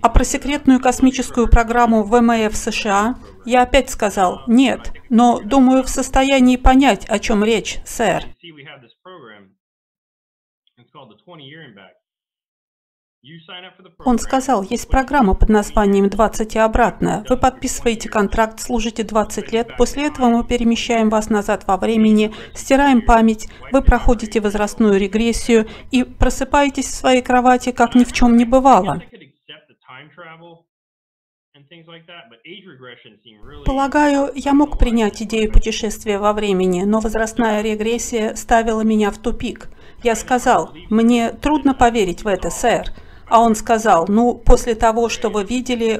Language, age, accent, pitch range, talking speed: Russian, 50-69, native, 205-255 Hz, 120 wpm